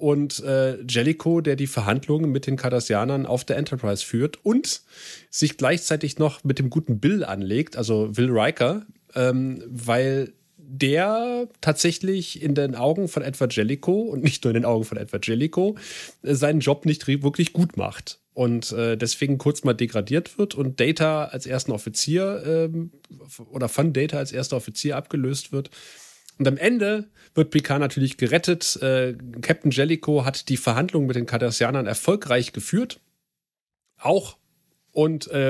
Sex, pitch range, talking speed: male, 125-155 Hz, 155 wpm